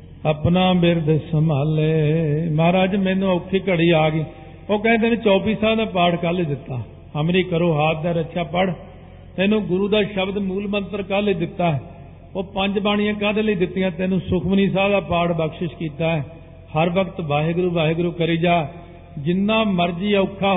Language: Punjabi